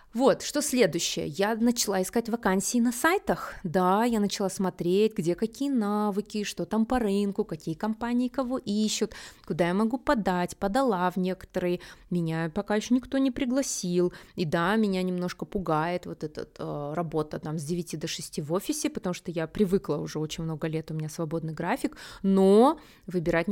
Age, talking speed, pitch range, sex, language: 20-39, 170 wpm, 170-215 Hz, female, Russian